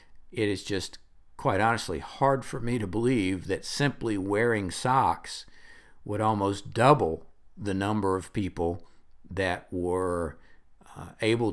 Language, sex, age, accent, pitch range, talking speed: English, male, 60-79, American, 95-120 Hz, 130 wpm